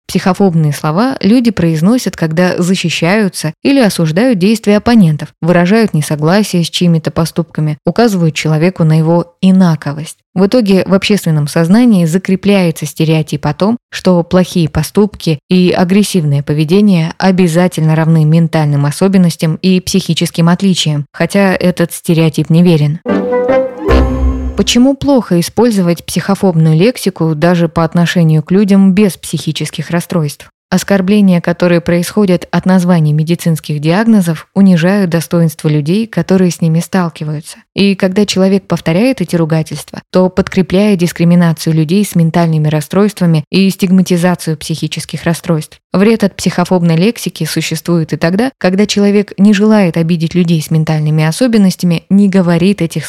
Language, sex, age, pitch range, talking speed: Russian, female, 20-39, 160-195 Hz, 125 wpm